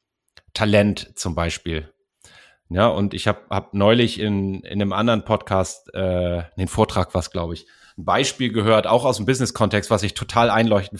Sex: male